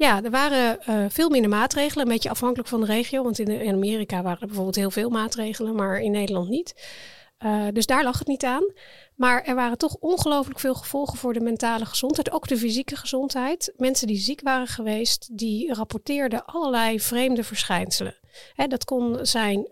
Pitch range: 220-260 Hz